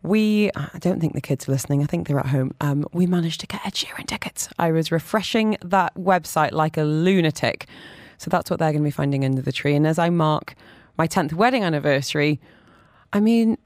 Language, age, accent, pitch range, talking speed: English, 20-39, British, 145-190 Hz, 220 wpm